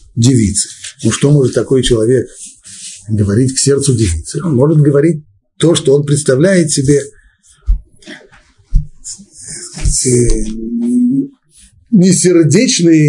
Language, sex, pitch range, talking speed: Russian, male, 130-165 Hz, 85 wpm